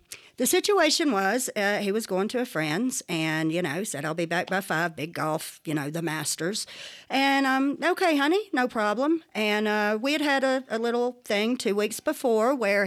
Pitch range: 170-265 Hz